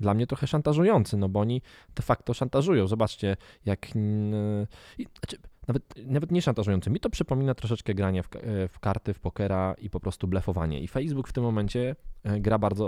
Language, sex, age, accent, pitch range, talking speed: Polish, male, 20-39, native, 95-110 Hz, 180 wpm